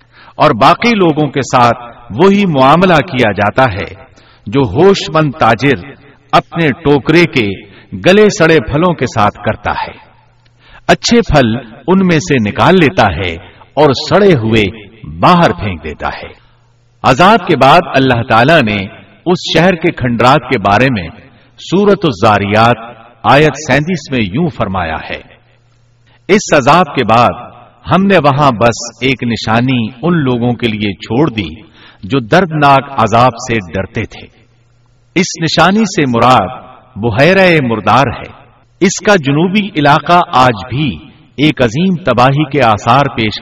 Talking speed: 140 wpm